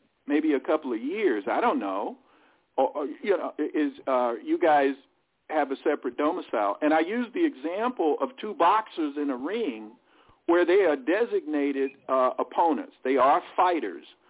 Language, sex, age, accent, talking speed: English, male, 50-69, American, 170 wpm